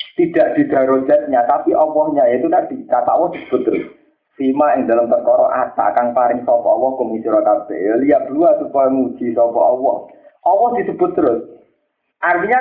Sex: male